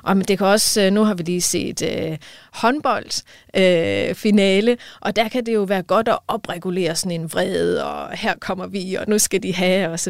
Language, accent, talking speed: Danish, native, 215 wpm